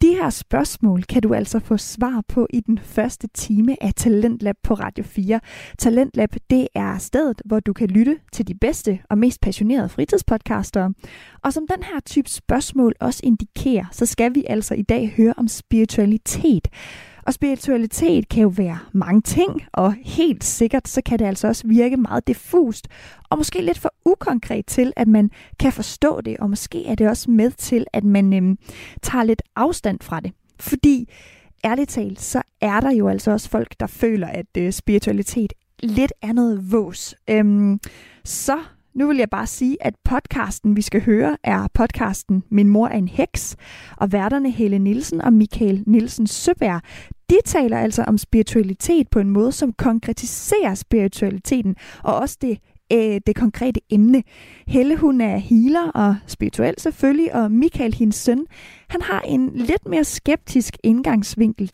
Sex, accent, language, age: female, native, Danish, 20-39